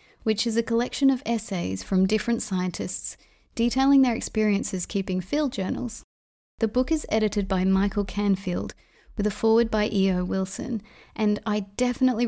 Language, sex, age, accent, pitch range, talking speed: English, female, 30-49, Australian, 185-225 Hz, 150 wpm